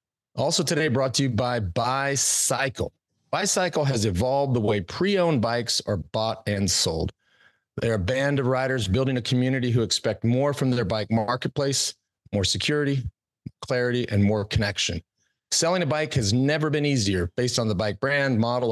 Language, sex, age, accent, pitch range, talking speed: English, male, 40-59, American, 110-140 Hz, 165 wpm